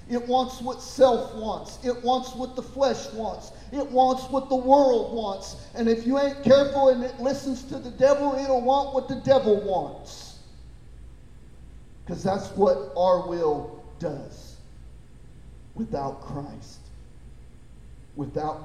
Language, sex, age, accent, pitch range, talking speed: English, male, 40-59, American, 140-205 Hz, 140 wpm